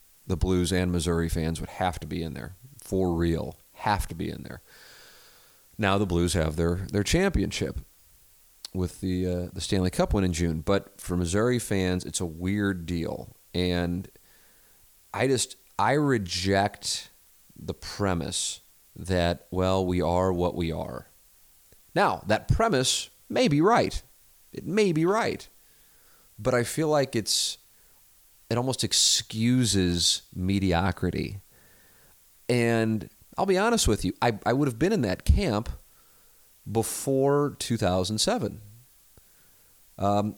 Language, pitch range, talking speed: English, 90-110 Hz, 135 wpm